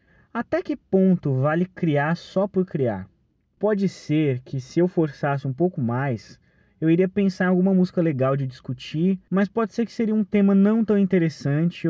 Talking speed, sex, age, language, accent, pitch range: 180 wpm, male, 20-39, Portuguese, Brazilian, 130-180 Hz